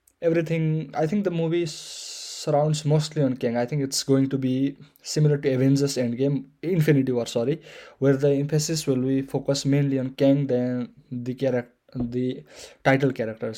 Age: 20-39